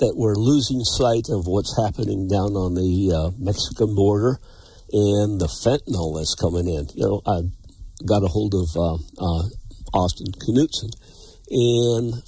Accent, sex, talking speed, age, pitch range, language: American, male, 155 wpm, 60-79, 95-125 Hz, English